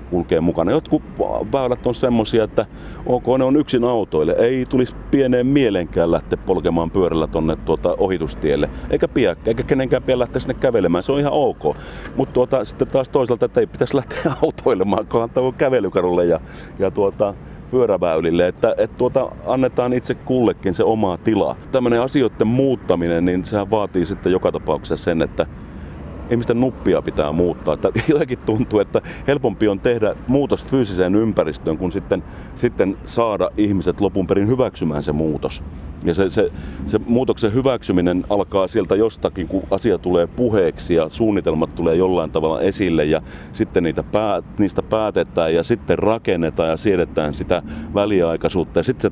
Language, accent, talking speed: Finnish, native, 160 wpm